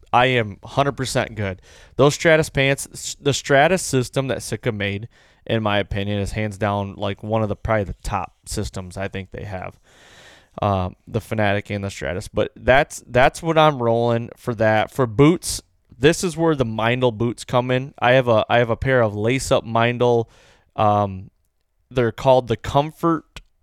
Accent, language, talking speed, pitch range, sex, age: American, English, 180 wpm, 105-125 Hz, male, 20-39